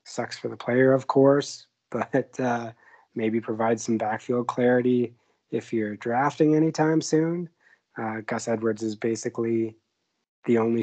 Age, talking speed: 20-39, 140 wpm